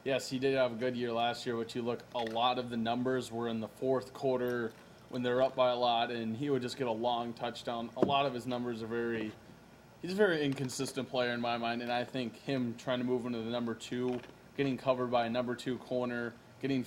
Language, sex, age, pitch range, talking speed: English, male, 20-39, 120-135 Hz, 250 wpm